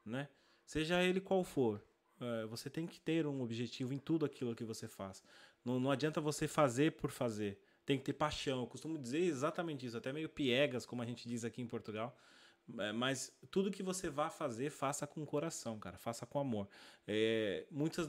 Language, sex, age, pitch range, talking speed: Portuguese, male, 20-39, 120-160 Hz, 200 wpm